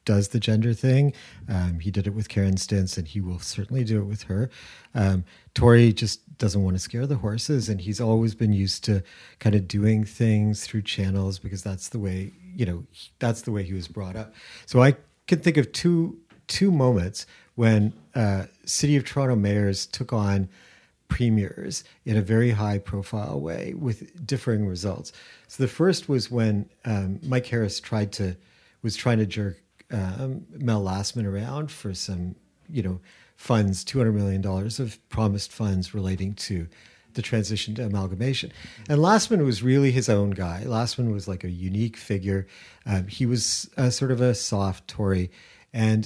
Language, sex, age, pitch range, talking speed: English, male, 40-59, 100-125 Hz, 175 wpm